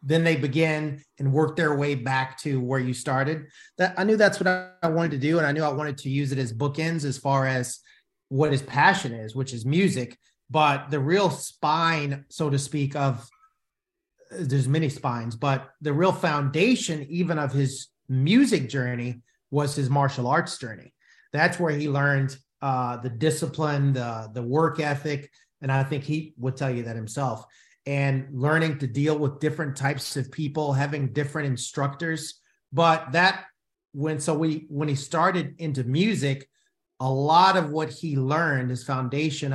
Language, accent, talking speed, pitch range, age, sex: English, American, 175 wpm, 130-160 Hz, 30-49, male